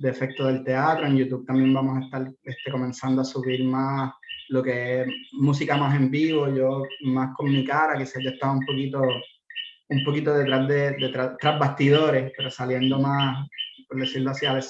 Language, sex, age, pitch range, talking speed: Spanish, male, 20-39, 130-145 Hz, 195 wpm